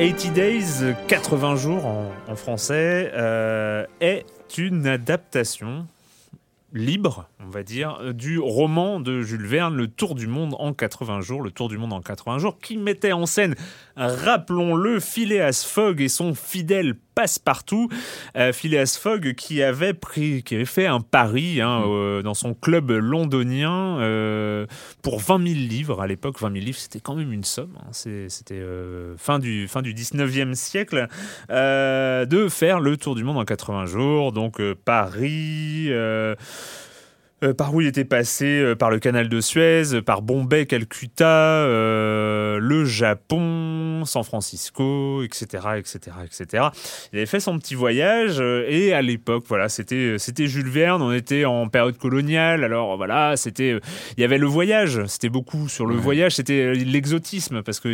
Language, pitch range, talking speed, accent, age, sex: French, 115-160 Hz, 165 wpm, French, 30-49, male